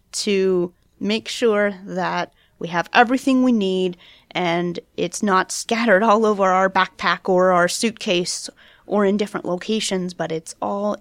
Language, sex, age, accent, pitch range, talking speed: English, female, 30-49, American, 190-240 Hz, 145 wpm